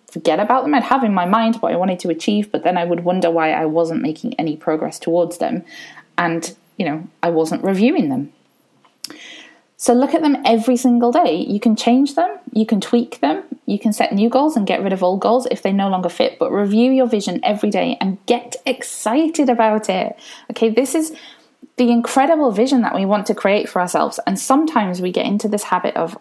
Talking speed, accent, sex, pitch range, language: 220 wpm, British, female, 180-250 Hz, English